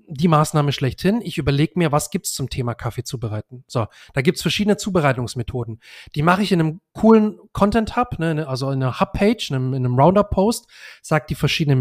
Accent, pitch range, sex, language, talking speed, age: German, 130-170 Hz, male, German, 200 wpm, 30-49